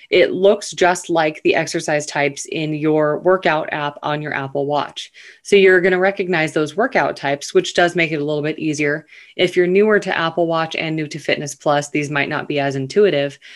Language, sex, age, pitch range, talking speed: English, female, 20-39, 145-180 Hz, 210 wpm